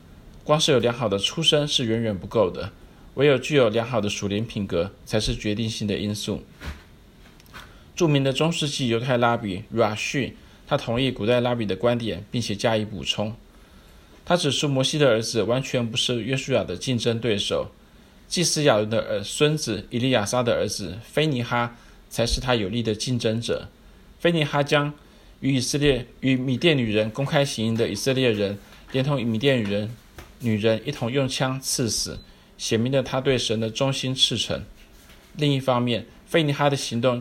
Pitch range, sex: 110-135 Hz, male